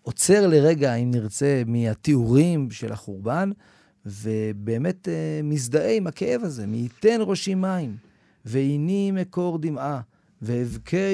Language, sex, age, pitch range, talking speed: Hebrew, male, 40-59, 115-160 Hz, 115 wpm